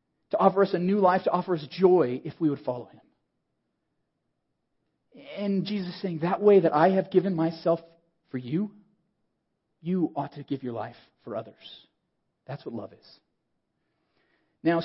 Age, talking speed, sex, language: 40-59, 165 wpm, male, English